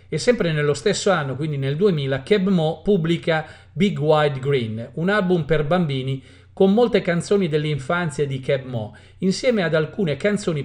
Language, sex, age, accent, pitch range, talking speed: Italian, male, 40-59, native, 140-180 Hz, 165 wpm